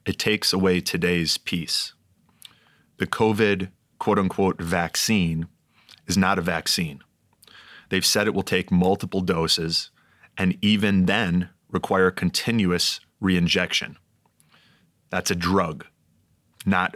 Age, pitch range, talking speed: 30-49, 90-100 Hz, 105 wpm